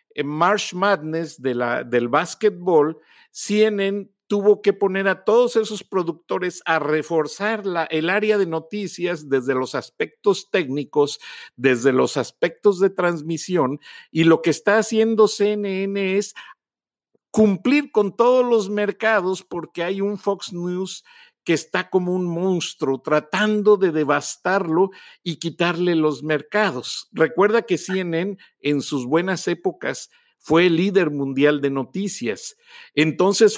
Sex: male